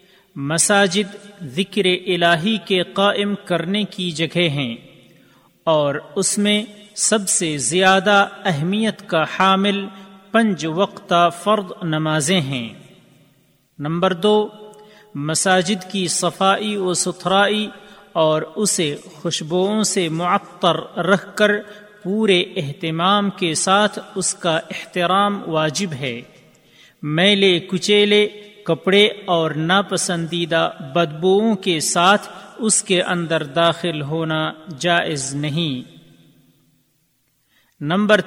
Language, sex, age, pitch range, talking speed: Urdu, male, 40-59, 165-205 Hz, 95 wpm